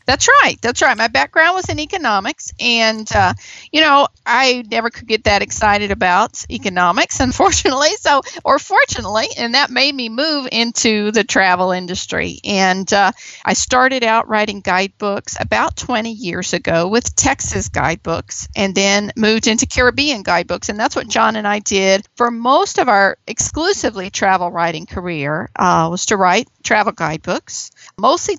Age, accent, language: 50-69, American, English